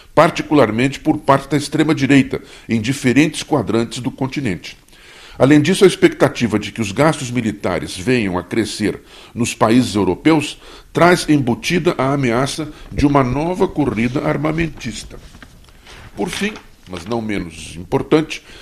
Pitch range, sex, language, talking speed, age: 115-150 Hz, male, Portuguese, 130 wpm, 60-79